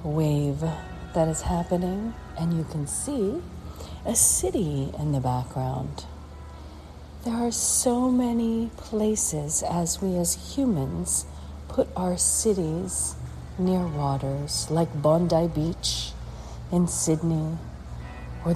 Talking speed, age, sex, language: 105 wpm, 40-59, female, English